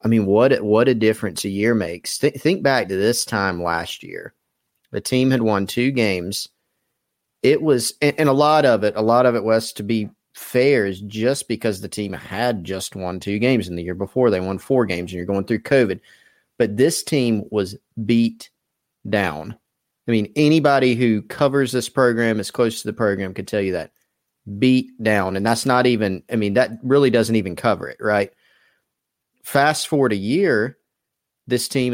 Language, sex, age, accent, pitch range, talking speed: English, male, 30-49, American, 100-125 Hz, 195 wpm